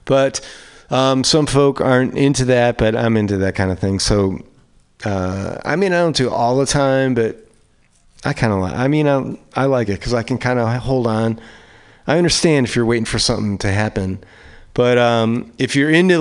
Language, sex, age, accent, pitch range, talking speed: English, male, 30-49, American, 100-135 Hz, 210 wpm